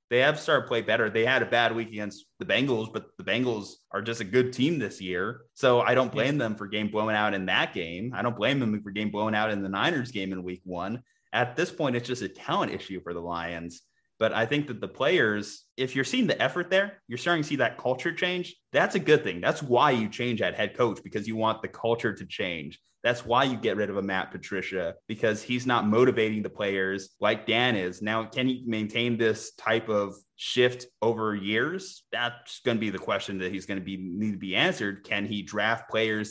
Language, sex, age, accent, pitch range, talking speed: English, male, 30-49, American, 100-125 Hz, 245 wpm